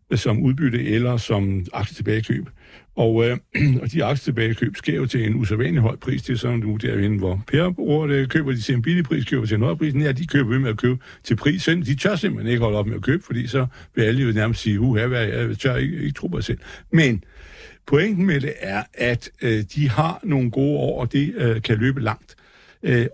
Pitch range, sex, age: 115-145 Hz, male, 60-79